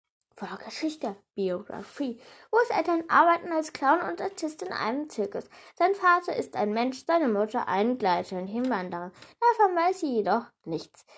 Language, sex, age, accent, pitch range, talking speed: German, female, 10-29, German, 225-340 Hz, 160 wpm